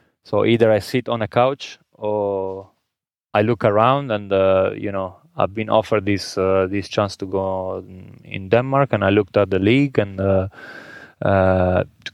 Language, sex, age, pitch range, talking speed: Danish, male, 20-39, 95-110 Hz, 180 wpm